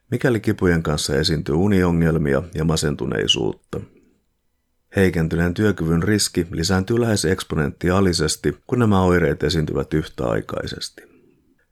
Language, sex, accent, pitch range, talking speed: Finnish, male, native, 80-95 Hz, 90 wpm